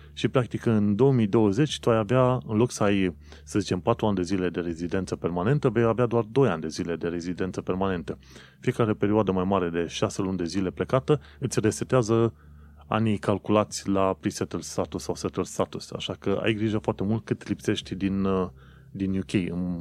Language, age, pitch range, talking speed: Romanian, 30-49, 90-115 Hz, 190 wpm